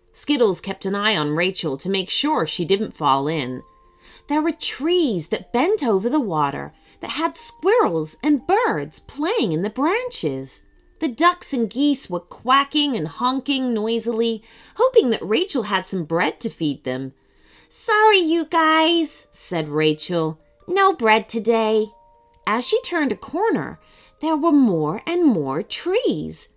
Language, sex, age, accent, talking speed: English, female, 30-49, American, 150 wpm